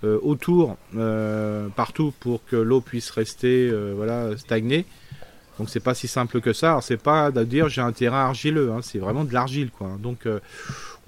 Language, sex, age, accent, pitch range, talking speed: French, male, 30-49, French, 105-130 Hz, 190 wpm